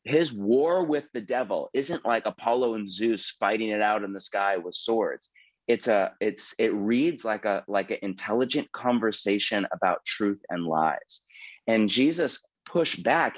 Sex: male